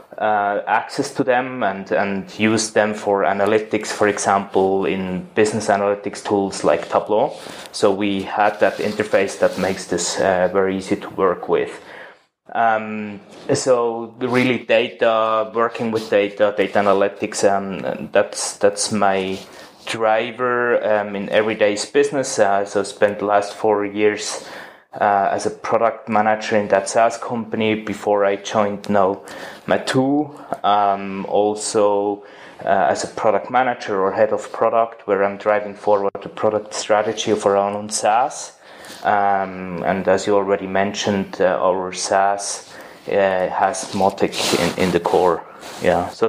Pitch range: 100-110 Hz